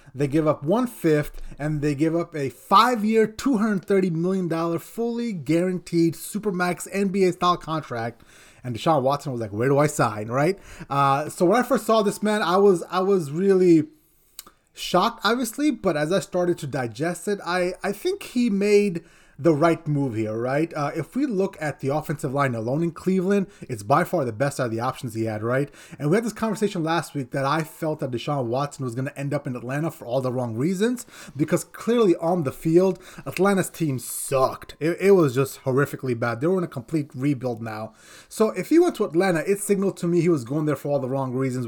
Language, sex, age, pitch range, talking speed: English, male, 30-49, 130-185 Hz, 215 wpm